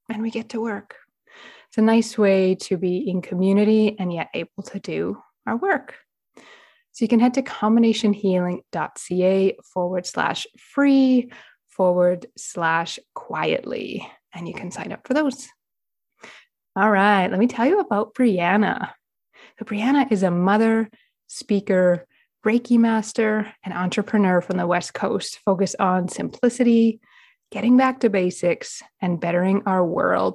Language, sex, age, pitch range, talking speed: English, female, 20-39, 180-230 Hz, 140 wpm